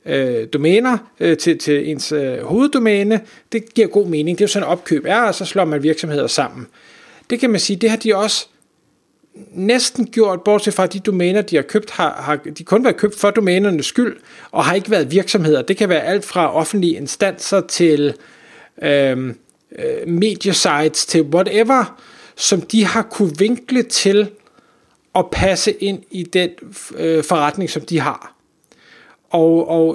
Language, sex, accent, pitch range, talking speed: Danish, male, native, 160-215 Hz, 170 wpm